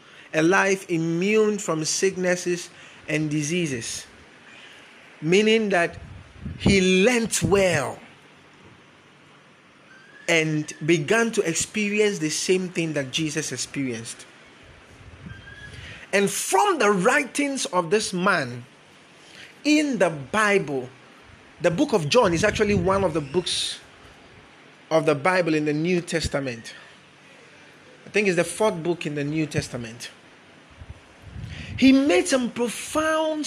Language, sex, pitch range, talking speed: English, male, 150-210 Hz, 115 wpm